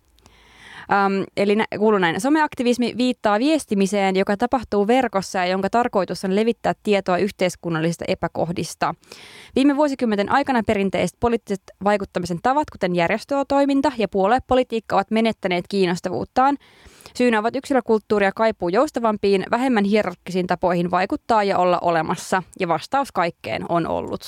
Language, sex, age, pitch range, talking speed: Finnish, female, 20-39, 190-240 Hz, 125 wpm